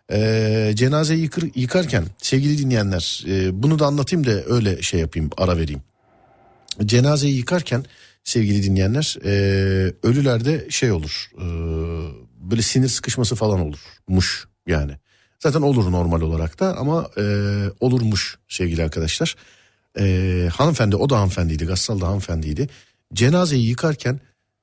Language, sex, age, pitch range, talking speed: Turkish, male, 50-69, 95-140 Hz, 125 wpm